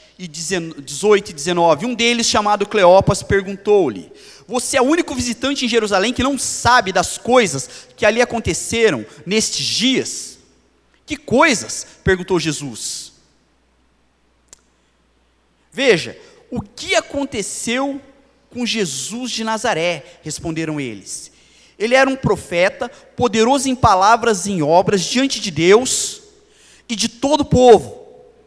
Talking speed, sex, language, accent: 120 wpm, male, Portuguese, Brazilian